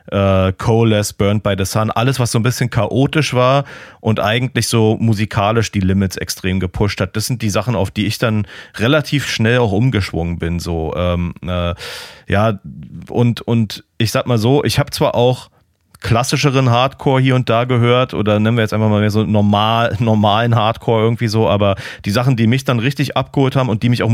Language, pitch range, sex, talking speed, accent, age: German, 95-120 Hz, male, 200 wpm, German, 40-59